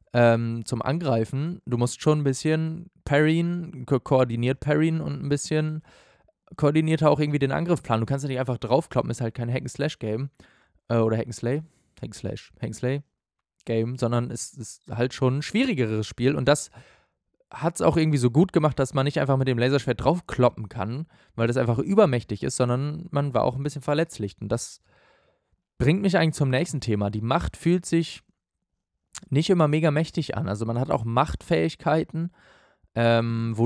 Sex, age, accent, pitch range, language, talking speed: male, 20-39, German, 115-155 Hz, German, 175 wpm